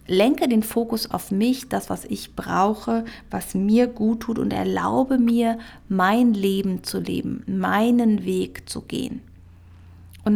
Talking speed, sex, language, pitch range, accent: 145 wpm, female, German, 175-225 Hz, German